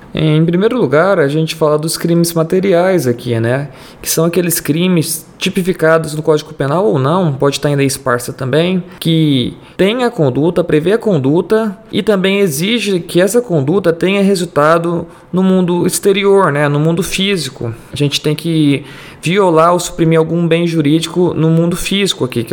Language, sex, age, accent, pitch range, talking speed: Portuguese, male, 20-39, Brazilian, 145-185 Hz, 170 wpm